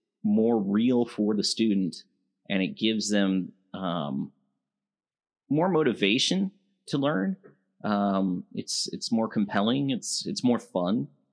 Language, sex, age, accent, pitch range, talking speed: English, male, 30-49, American, 90-105 Hz, 120 wpm